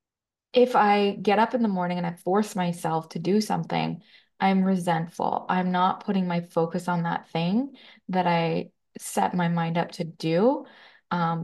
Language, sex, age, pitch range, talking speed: English, female, 20-39, 170-210 Hz, 175 wpm